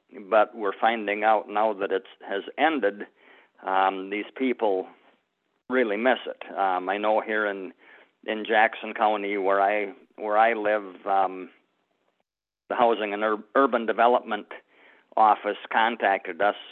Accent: American